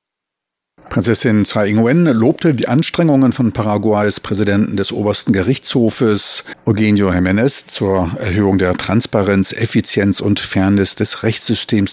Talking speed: 115 wpm